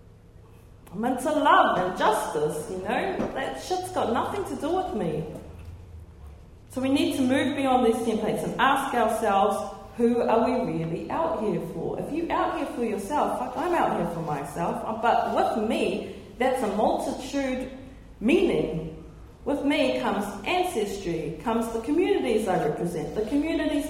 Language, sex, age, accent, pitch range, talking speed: English, female, 40-59, Australian, 175-275 Hz, 160 wpm